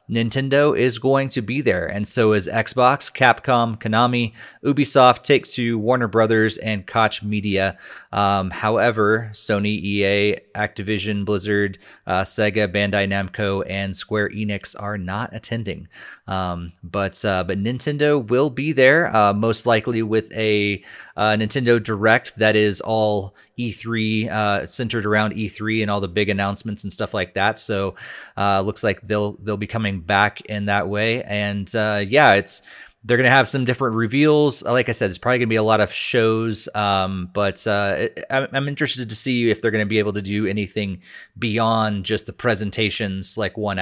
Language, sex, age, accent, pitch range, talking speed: English, male, 30-49, American, 100-115 Hz, 170 wpm